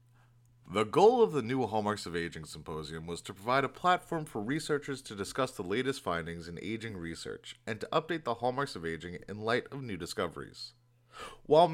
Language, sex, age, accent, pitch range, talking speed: English, male, 30-49, American, 90-135 Hz, 190 wpm